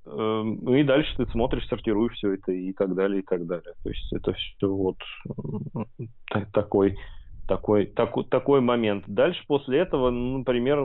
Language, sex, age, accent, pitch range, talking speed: Russian, male, 20-39, native, 100-115 Hz, 145 wpm